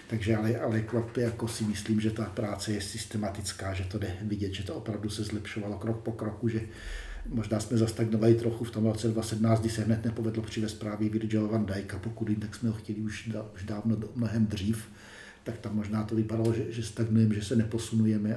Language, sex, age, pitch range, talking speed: Slovak, male, 50-69, 105-115 Hz, 205 wpm